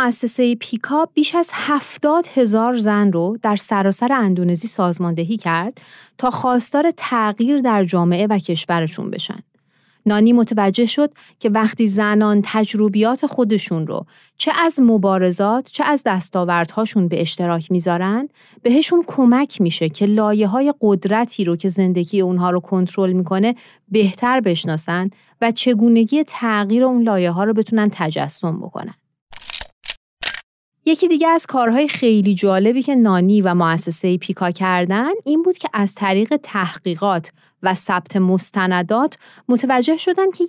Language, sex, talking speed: Persian, female, 125 wpm